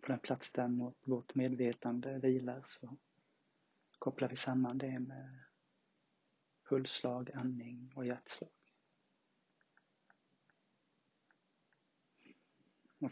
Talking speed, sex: 80 wpm, male